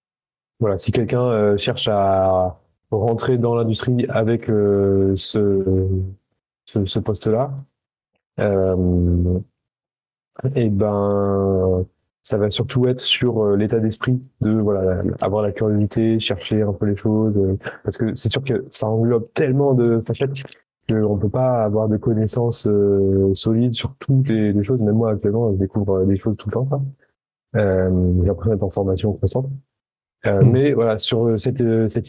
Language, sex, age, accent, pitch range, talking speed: French, male, 20-39, French, 95-115 Hz, 160 wpm